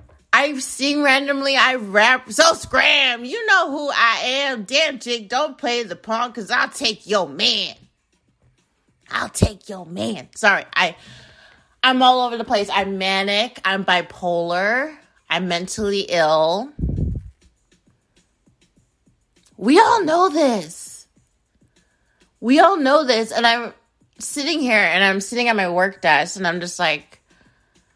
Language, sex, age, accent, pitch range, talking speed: English, female, 30-49, American, 205-265 Hz, 135 wpm